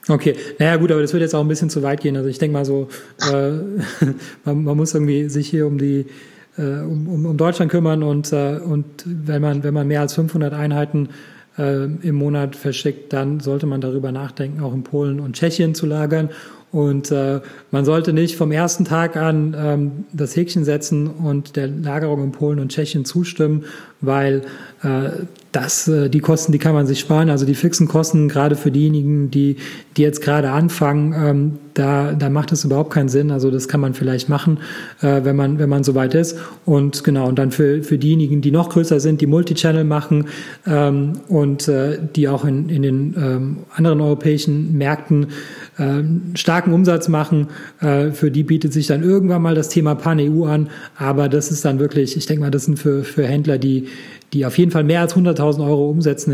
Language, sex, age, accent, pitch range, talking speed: German, male, 30-49, German, 140-155 Hz, 205 wpm